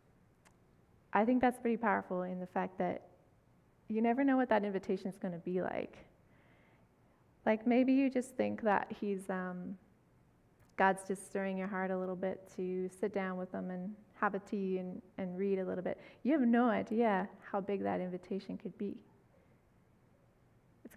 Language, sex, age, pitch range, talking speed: English, female, 20-39, 185-220 Hz, 175 wpm